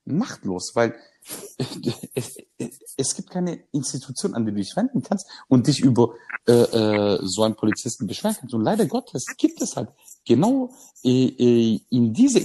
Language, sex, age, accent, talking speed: German, male, 50-69, German, 170 wpm